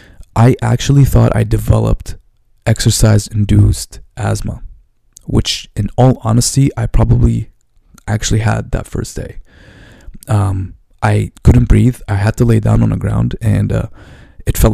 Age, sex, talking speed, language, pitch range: 20-39, male, 140 wpm, English, 105-120 Hz